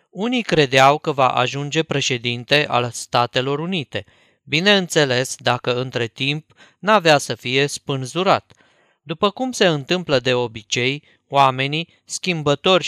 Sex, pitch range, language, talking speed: male, 130-180 Hz, Romanian, 115 wpm